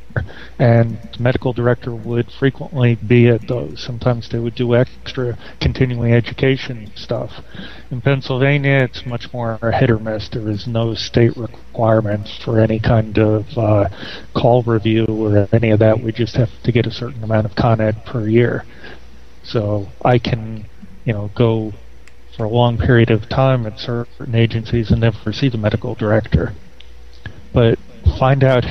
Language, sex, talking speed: English, male, 165 wpm